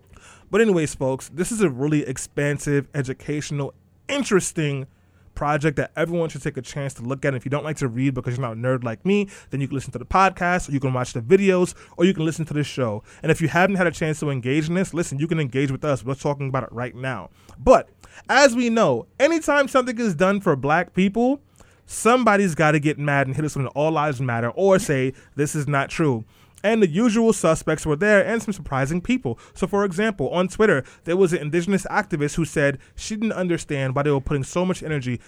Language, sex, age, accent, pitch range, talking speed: English, male, 20-39, American, 130-175 Hz, 235 wpm